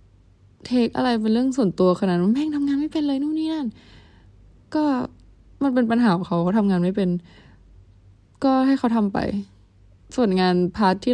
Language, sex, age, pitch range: Thai, female, 20-39, 175-240 Hz